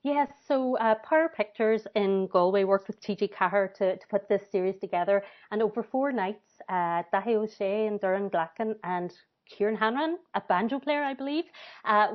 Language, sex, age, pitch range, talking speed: English, female, 30-49, 185-220 Hz, 185 wpm